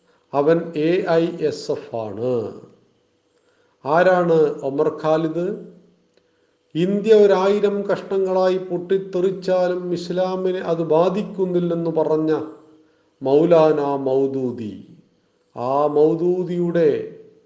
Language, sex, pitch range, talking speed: Malayalam, male, 150-185 Hz, 70 wpm